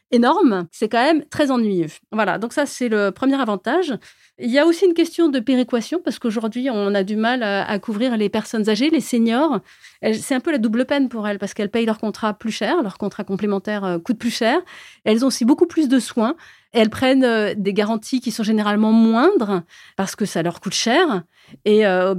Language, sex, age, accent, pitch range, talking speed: French, female, 30-49, French, 200-255 Hz, 220 wpm